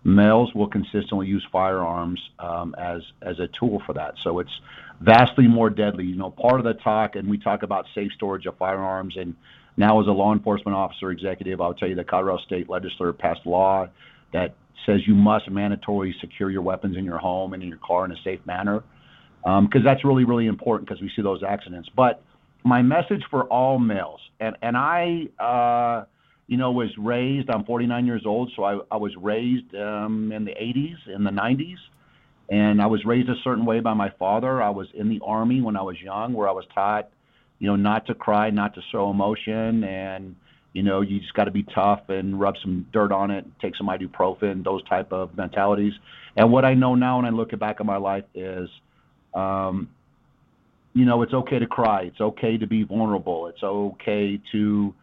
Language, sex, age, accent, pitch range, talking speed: English, male, 50-69, American, 95-115 Hz, 205 wpm